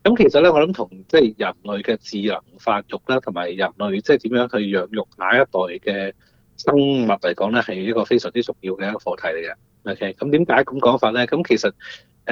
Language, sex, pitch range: Chinese, male, 100-130 Hz